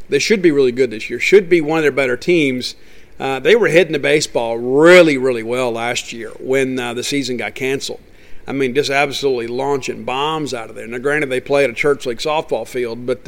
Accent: American